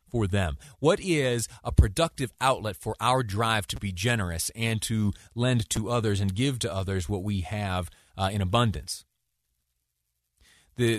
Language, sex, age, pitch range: English, male, 30-49, 90-120 Hz